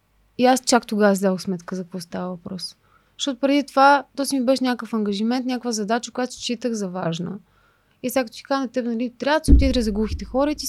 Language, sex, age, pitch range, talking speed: Bulgarian, female, 20-39, 195-255 Hz, 230 wpm